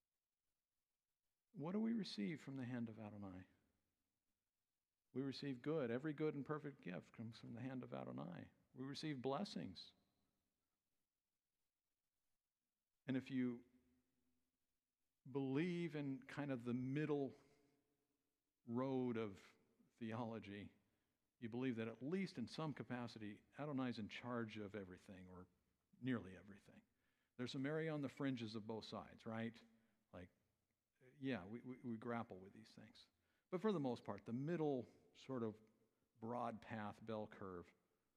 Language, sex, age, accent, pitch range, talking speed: English, male, 50-69, American, 105-140 Hz, 135 wpm